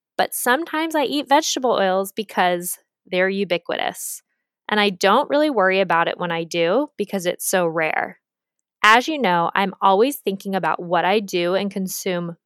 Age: 20-39